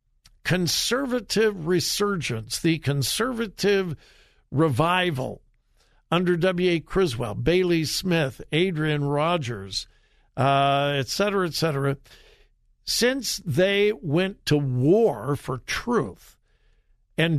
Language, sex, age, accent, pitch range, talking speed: English, male, 60-79, American, 145-195 Hz, 80 wpm